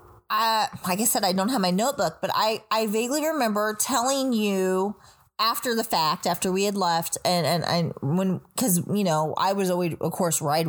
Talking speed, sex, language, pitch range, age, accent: 200 wpm, female, English, 180-220 Hz, 20-39, American